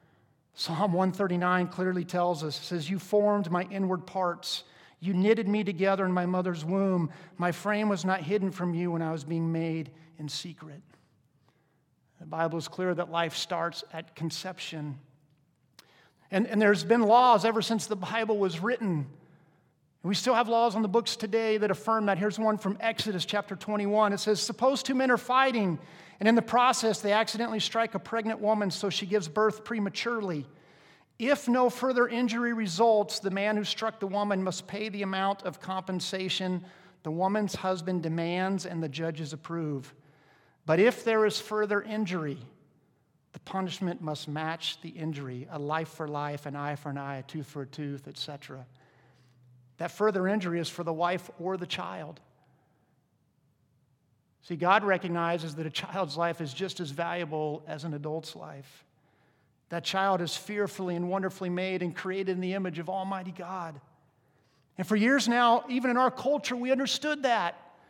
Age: 50-69